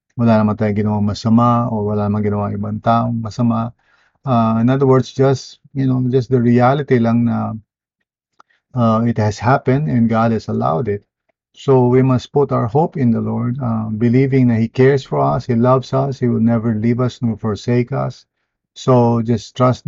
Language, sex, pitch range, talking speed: English, male, 110-125 Hz, 185 wpm